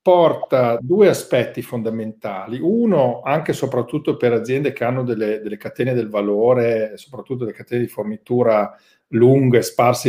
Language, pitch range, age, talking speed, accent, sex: Italian, 110-140 Hz, 40-59, 145 wpm, native, male